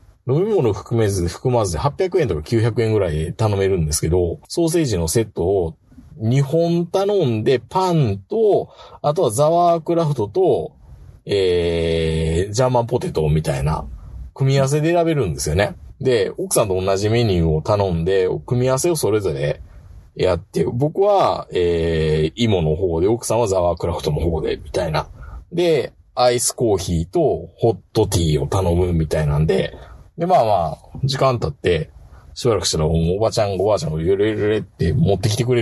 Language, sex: Japanese, male